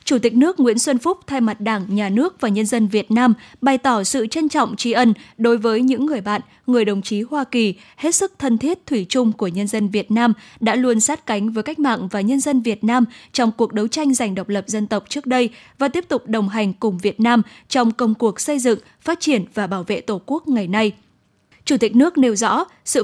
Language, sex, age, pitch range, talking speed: Vietnamese, female, 10-29, 215-265 Hz, 245 wpm